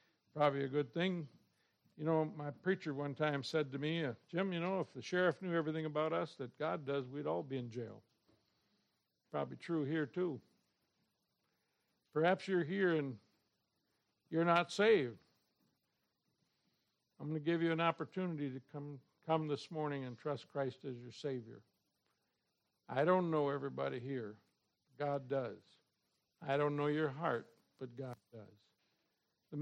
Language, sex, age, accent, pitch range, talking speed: English, male, 60-79, American, 135-165 Hz, 155 wpm